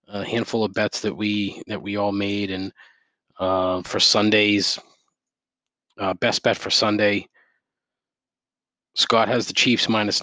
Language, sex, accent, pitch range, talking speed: English, male, American, 100-125 Hz, 140 wpm